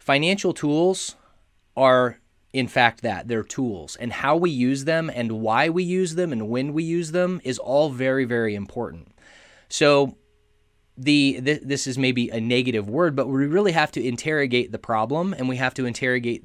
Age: 20-39